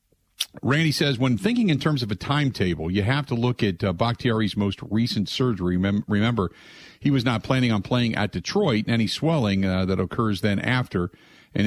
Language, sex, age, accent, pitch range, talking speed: English, male, 50-69, American, 95-130 Hz, 195 wpm